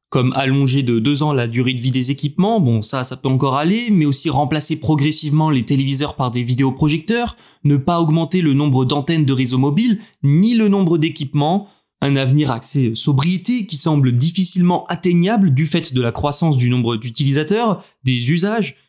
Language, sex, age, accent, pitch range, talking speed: French, male, 20-39, French, 135-175 Hz, 180 wpm